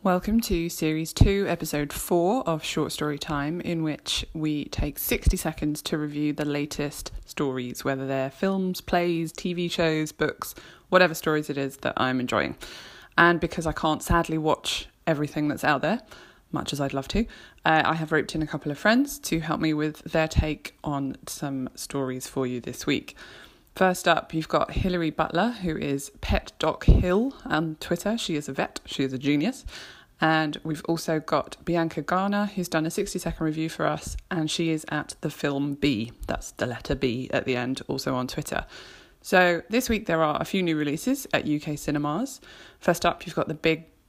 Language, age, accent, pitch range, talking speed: English, 20-39, British, 145-180 Hz, 195 wpm